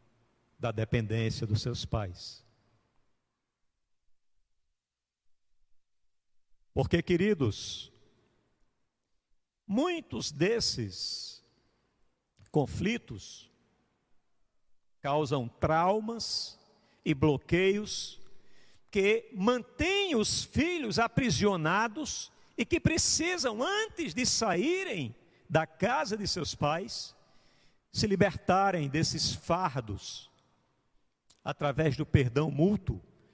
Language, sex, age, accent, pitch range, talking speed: Portuguese, male, 50-69, Brazilian, 120-195 Hz, 70 wpm